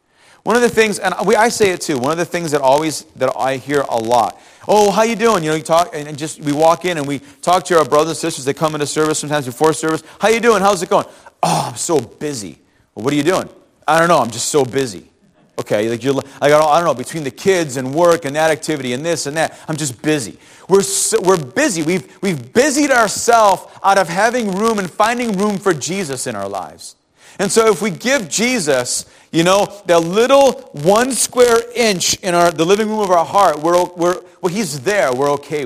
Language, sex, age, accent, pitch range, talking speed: English, male, 30-49, American, 150-215 Hz, 235 wpm